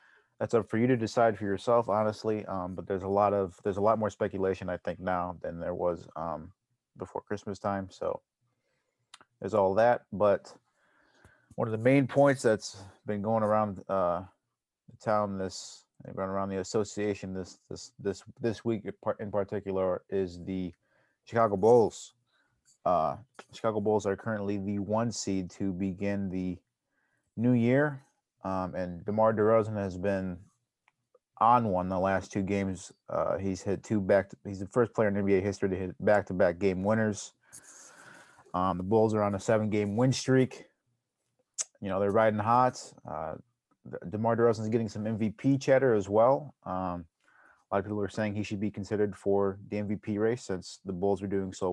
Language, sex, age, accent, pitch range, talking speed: English, male, 30-49, American, 95-110 Hz, 170 wpm